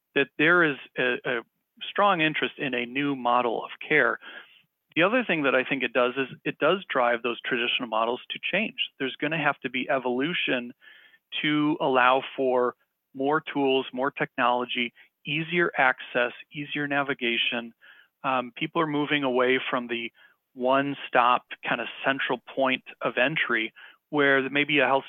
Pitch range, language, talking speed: 130-155 Hz, English, 160 wpm